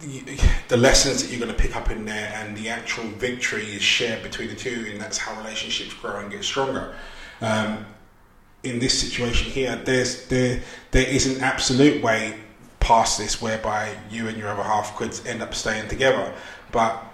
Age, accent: 20-39, British